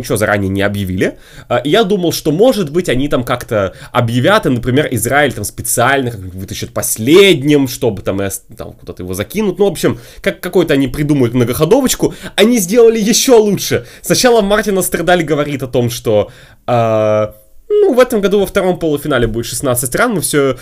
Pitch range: 120-180 Hz